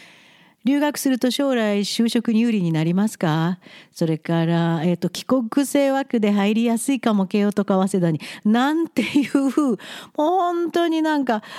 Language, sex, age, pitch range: Japanese, female, 50-69, 185-240 Hz